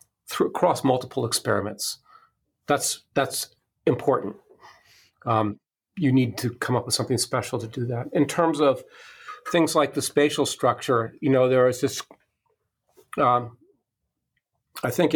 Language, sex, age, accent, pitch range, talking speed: English, male, 40-59, American, 115-145 Hz, 135 wpm